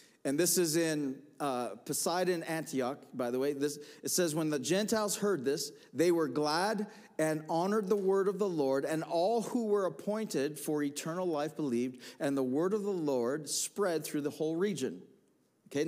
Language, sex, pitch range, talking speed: English, male, 155-210 Hz, 185 wpm